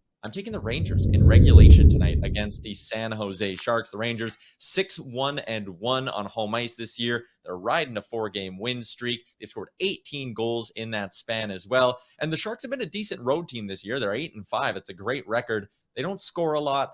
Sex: male